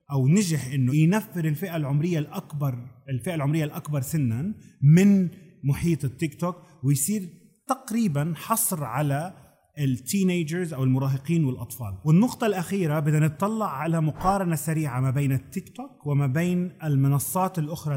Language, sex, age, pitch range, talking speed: Arabic, male, 30-49, 135-170 Hz, 125 wpm